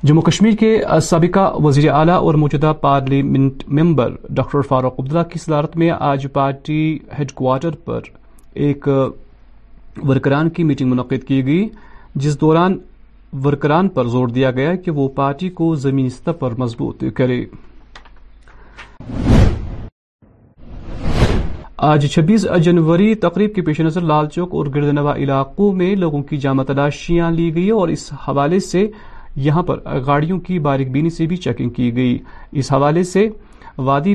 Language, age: Urdu, 40-59